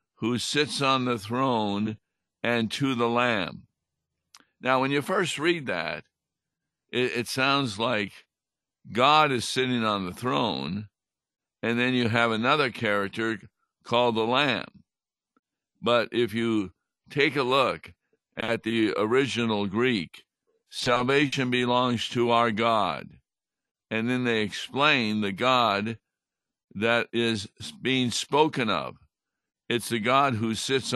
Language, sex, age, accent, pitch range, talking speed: English, male, 60-79, American, 110-130 Hz, 125 wpm